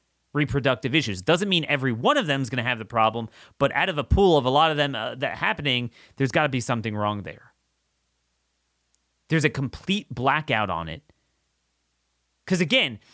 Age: 30-49